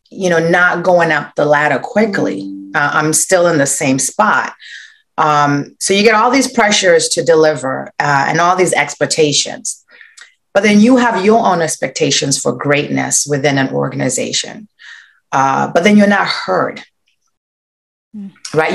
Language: English